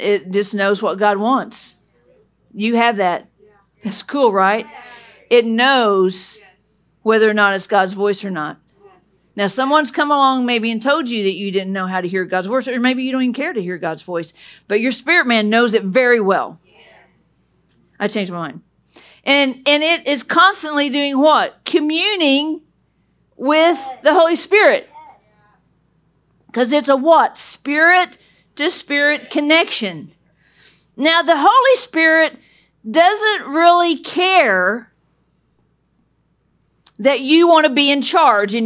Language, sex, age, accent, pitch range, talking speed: English, female, 50-69, American, 205-300 Hz, 150 wpm